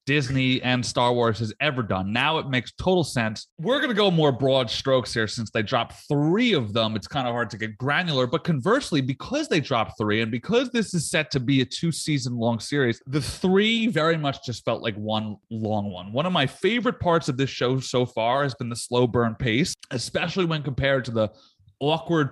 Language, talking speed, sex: English, 225 wpm, male